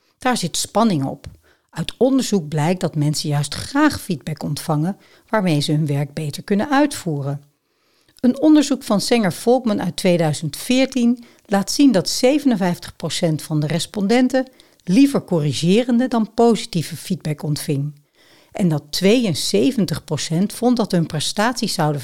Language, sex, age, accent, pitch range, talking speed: Dutch, female, 60-79, Dutch, 155-225 Hz, 130 wpm